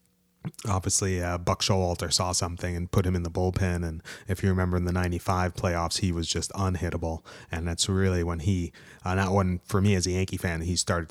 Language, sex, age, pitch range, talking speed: English, male, 30-49, 85-95 Hz, 215 wpm